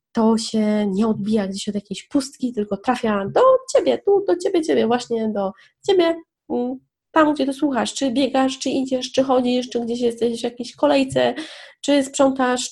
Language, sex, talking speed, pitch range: Polish, female, 175 wpm, 220-305 Hz